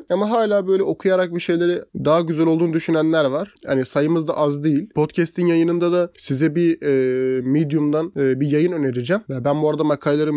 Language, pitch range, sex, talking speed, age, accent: Turkish, 135-170 Hz, male, 180 wpm, 20-39, native